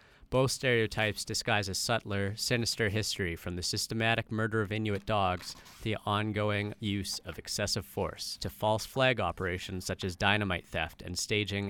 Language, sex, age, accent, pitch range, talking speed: English, male, 30-49, American, 95-110 Hz, 155 wpm